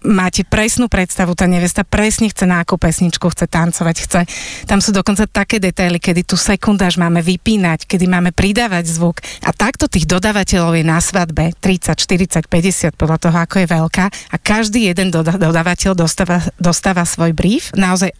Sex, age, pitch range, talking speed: female, 30-49, 170-195 Hz, 165 wpm